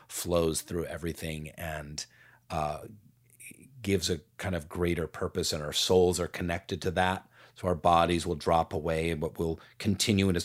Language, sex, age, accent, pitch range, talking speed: English, male, 30-49, American, 85-110 Hz, 160 wpm